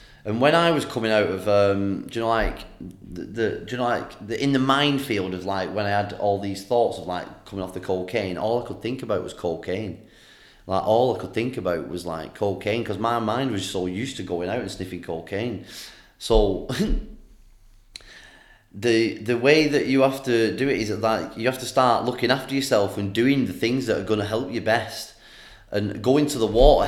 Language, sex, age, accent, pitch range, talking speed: English, male, 30-49, British, 95-115 Hz, 225 wpm